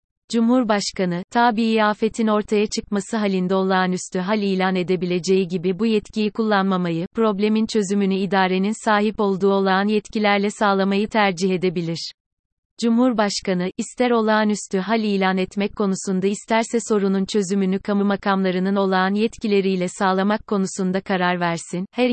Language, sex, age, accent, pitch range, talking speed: Turkish, female, 30-49, native, 190-215 Hz, 115 wpm